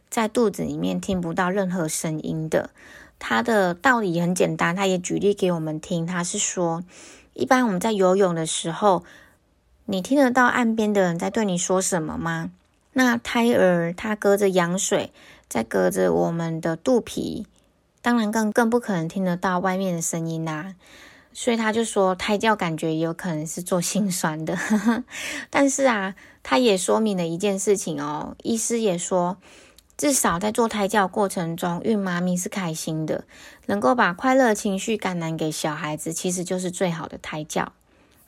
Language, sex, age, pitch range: Chinese, female, 20-39, 170-225 Hz